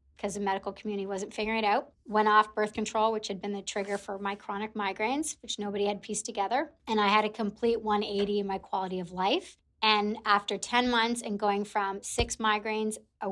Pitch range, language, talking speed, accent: 205-235 Hz, English, 210 wpm, American